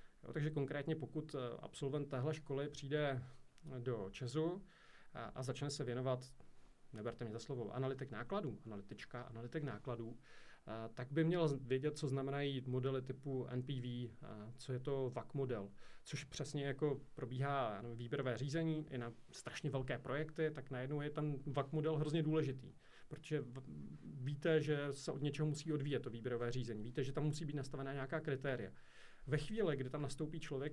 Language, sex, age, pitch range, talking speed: Czech, male, 40-59, 130-155 Hz, 155 wpm